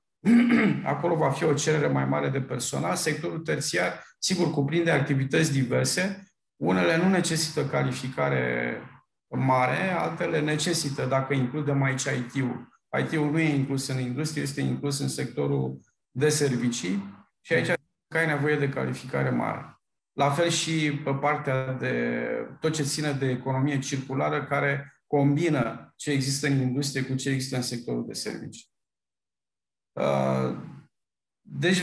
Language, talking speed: Romanian, 135 wpm